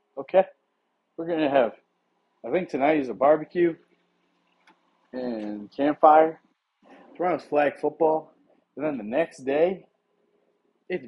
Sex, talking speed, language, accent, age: male, 115 wpm, English, American, 30-49